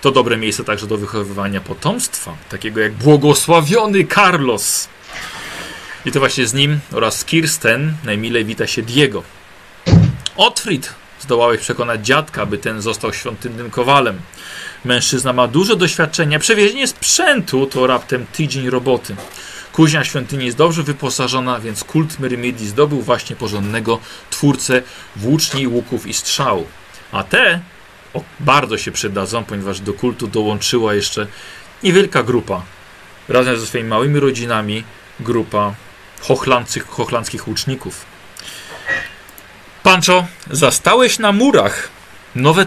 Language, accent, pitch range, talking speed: Polish, native, 110-150 Hz, 115 wpm